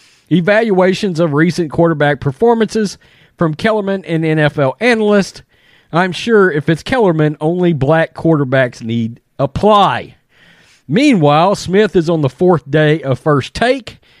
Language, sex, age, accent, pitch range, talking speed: English, male, 40-59, American, 150-220 Hz, 125 wpm